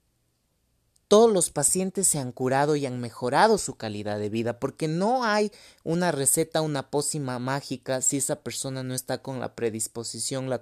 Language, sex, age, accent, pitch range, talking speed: Spanish, male, 30-49, Mexican, 125-155 Hz, 170 wpm